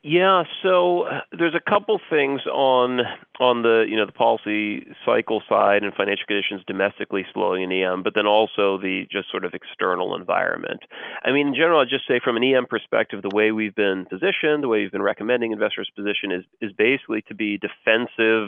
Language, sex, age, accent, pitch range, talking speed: English, male, 40-59, American, 100-130 Hz, 200 wpm